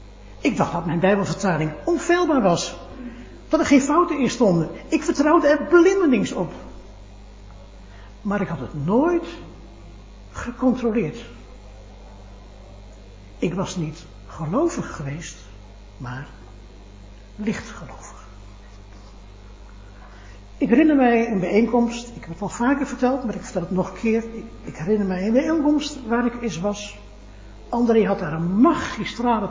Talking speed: 130 wpm